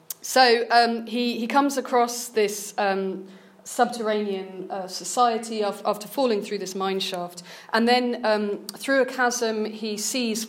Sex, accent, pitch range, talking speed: female, British, 190-215 Hz, 145 wpm